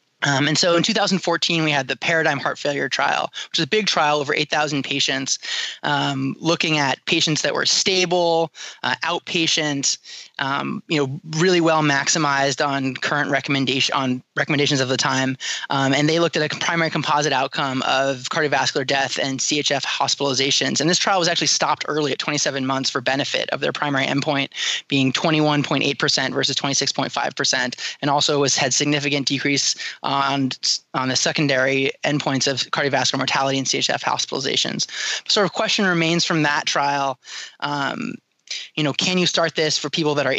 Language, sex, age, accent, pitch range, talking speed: English, male, 20-39, American, 140-170 Hz, 170 wpm